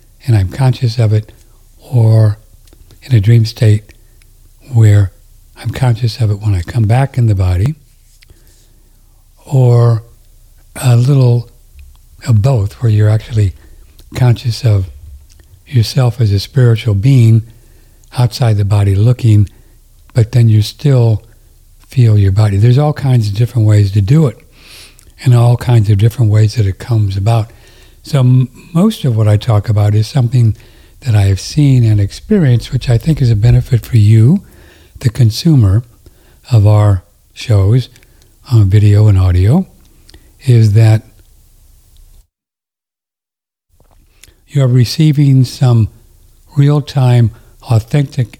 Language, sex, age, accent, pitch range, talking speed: English, male, 60-79, American, 105-125 Hz, 135 wpm